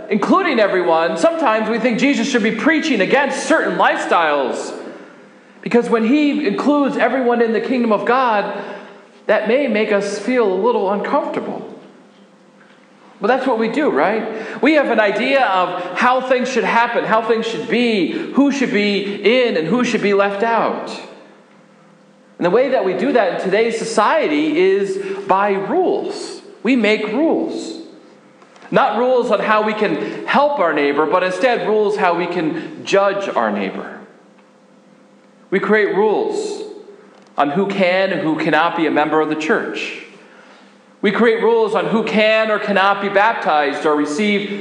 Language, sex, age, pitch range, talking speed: English, male, 40-59, 205-255 Hz, 160 wpm